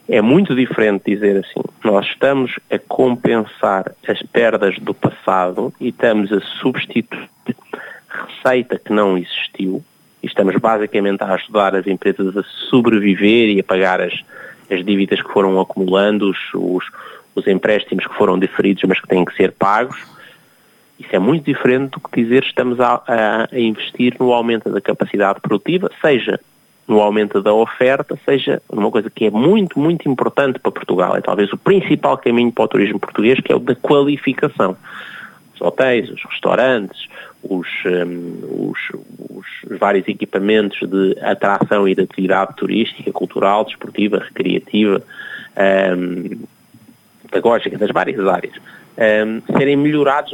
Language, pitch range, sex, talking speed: Portuguese, 100-145 Hz, male, 145 wpm